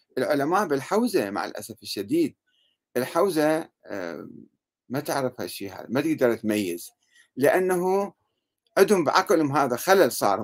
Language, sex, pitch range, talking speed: Arabic, male, 140-210 Hz, 110 wpm